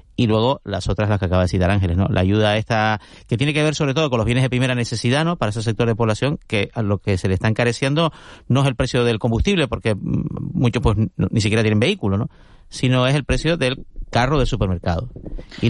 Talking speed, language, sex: 245 wpm, Spanish, male